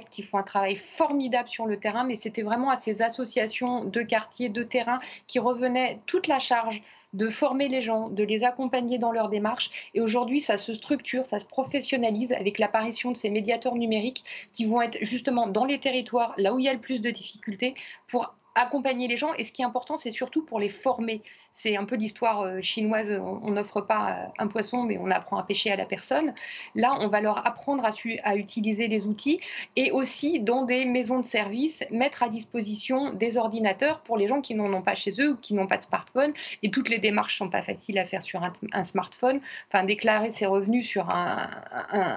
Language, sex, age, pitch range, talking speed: French, female, 30-49, 210-255 Hz, 220 wpm